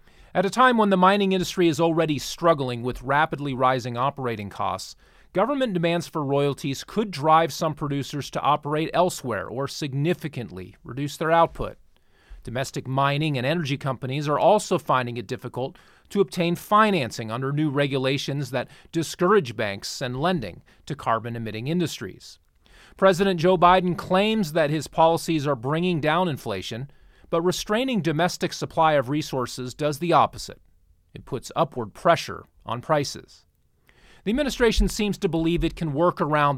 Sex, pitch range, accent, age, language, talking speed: male, 130-175 Hz, American, 30-49, English, 150 wpm